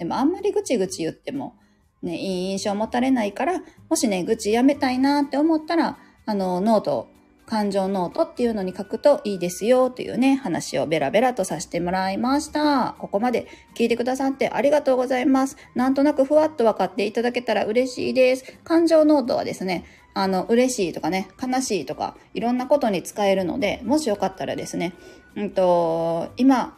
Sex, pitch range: female, 200-280 Hz